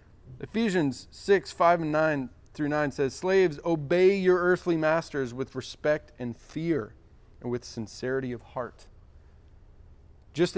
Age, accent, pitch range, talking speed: 30-49, American, 120-165 Hz, 130 wpm